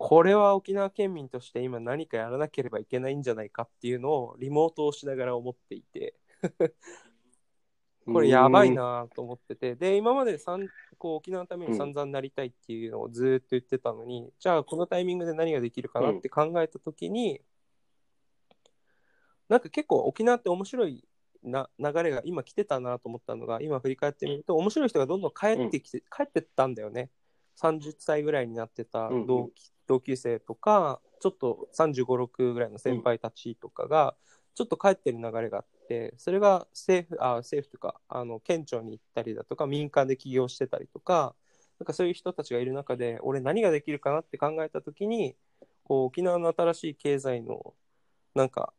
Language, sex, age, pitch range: Japanese, male, 20-39, 125-175 Hz